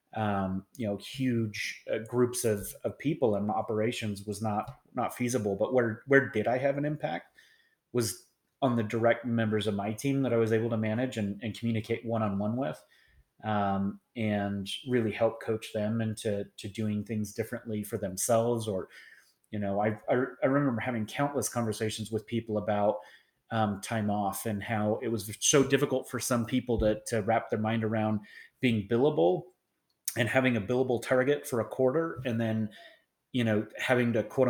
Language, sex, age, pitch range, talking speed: English, male, 30-49, 105-125 Hz, 180 wpm